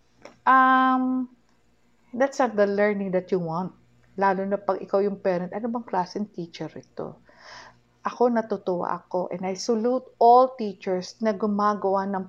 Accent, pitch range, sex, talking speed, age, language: Filipino, 190-235 Hz, female, 145 wpm, 50-69, English